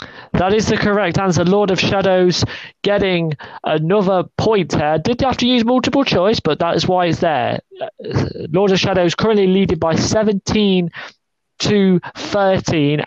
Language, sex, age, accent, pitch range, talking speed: English, male, 30-49, British, 155-195 Hz, 160 wpm